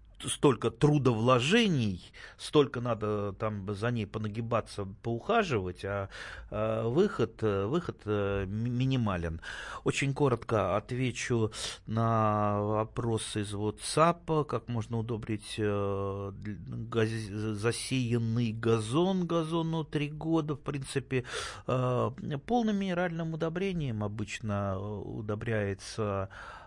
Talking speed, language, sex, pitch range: 80 wpm, Russian, male, 105-130 Hz